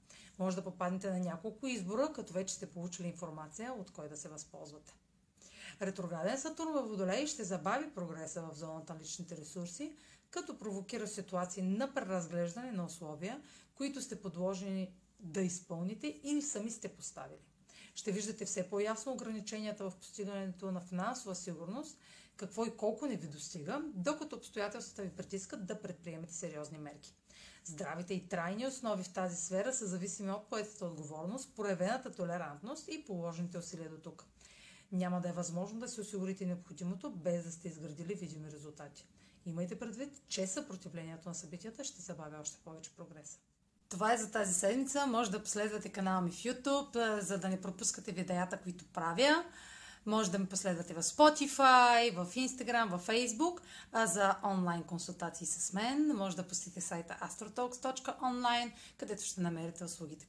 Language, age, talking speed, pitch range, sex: Bulgarian, 30-49, 155 wpm, 175-225 Hz, female